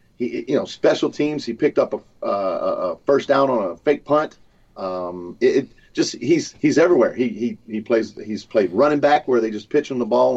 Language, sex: English, male